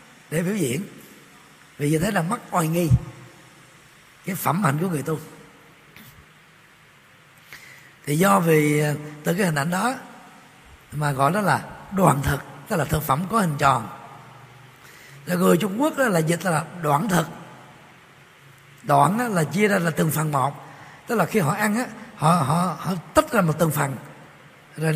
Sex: male